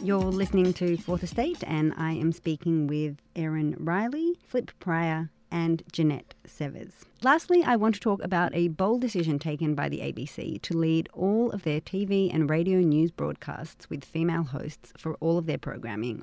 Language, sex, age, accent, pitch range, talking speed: English, female, 30-49, Australian, 155-185 Hz, 180 wpm